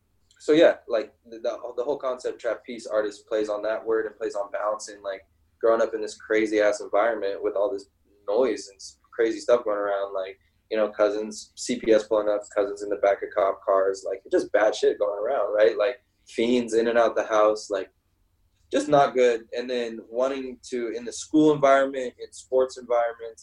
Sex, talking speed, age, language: male, 200 wpm, 20-39, English